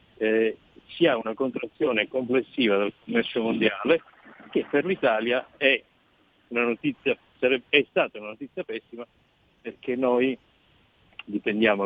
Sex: male